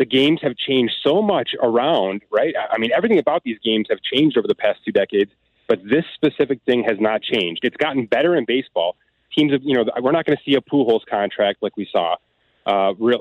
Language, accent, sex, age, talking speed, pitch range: English, American, male, 30-49, 225 wpm, 105-135 Hz